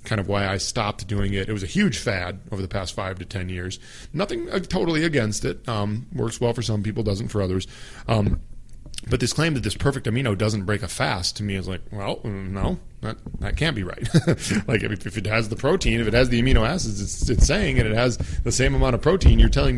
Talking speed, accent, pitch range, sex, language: 245 wpm, American, 100-125 Hz, male, English